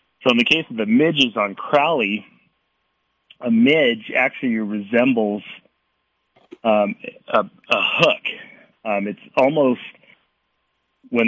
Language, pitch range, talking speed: English, 110-135 Hz, 110 wpm